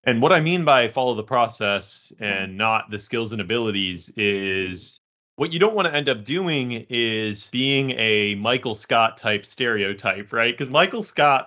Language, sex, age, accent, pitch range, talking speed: English, male, 30-49, American, 100-130 Hz, 180 wpm